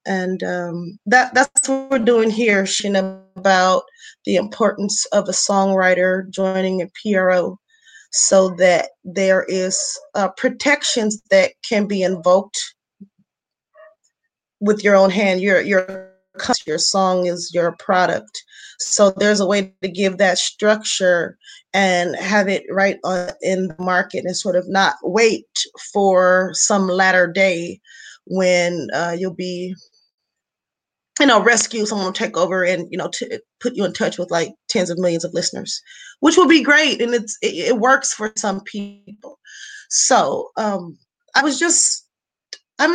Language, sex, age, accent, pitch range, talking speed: English, female, 20-39, American, 185-235 Hz, 150 wpm